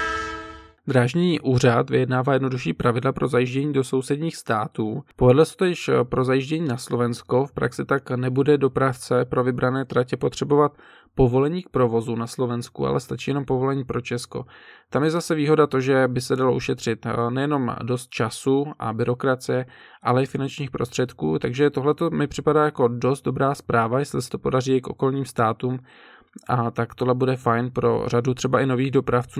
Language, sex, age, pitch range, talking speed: Czech, male, 20-39, 125-140 Hz, 170 wpm